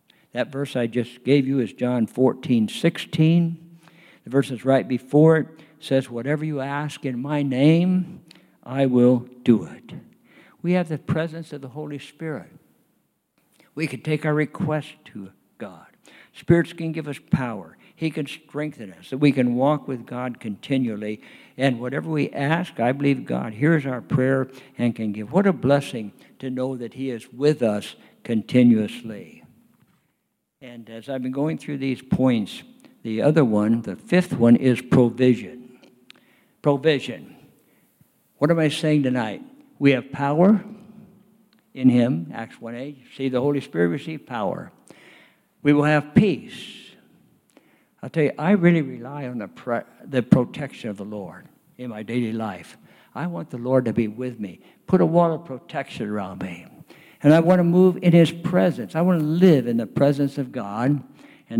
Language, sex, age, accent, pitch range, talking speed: English, male, 60-79, American, 125-160 Hz, 170 wpm